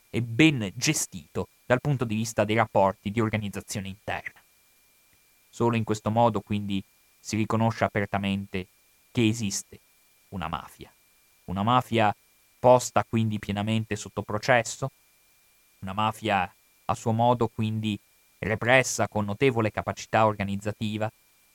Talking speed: 115 wpm